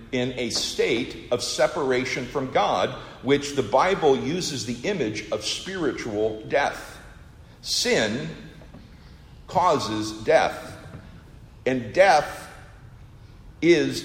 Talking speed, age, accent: 95 wpm, 50-69, American